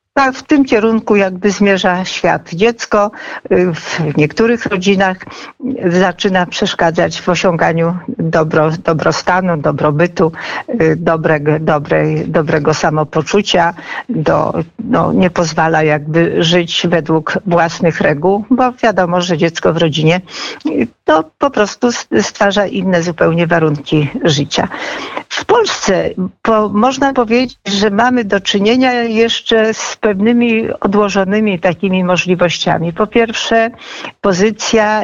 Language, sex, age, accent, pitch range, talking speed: Polish, female, 50-69, native, 170-215 Hz, 95 wpm